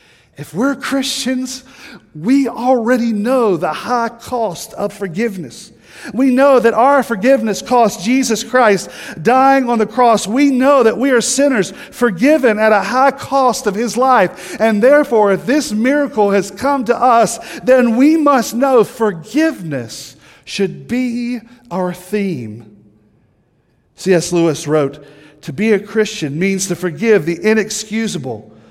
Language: English